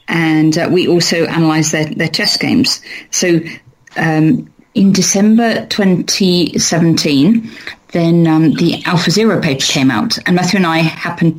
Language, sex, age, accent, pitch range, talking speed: English, female, 30-49, British, 155-180 Hz, 130 wpm